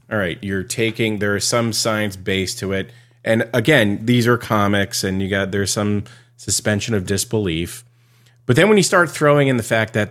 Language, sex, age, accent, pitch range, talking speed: English, male, 30-49, American, 95-120 Hz, 200 wpm